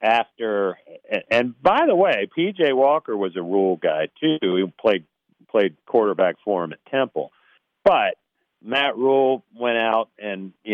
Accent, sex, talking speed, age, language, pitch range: American, male, 150 wpm, 50-69, English, 95-130 Hz